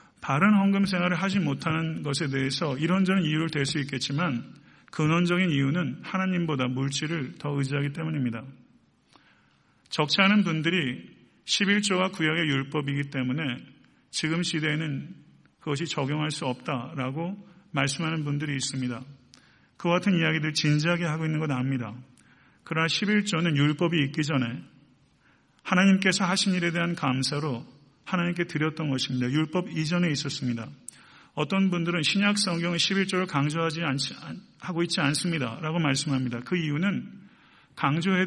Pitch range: 140-180 Hz